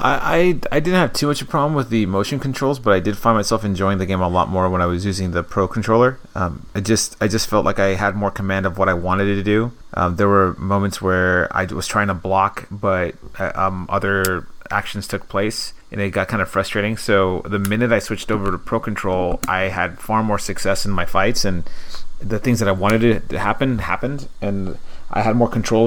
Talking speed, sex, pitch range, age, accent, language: 235 wpm, male, 95-110 Hz, 30-49, American, English